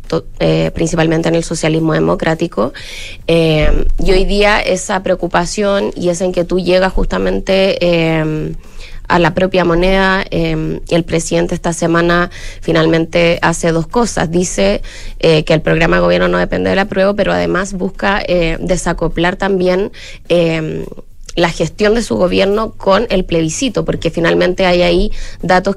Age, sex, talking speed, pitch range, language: 20-39, female, 150 wpm, 160-185 Hz, Spanish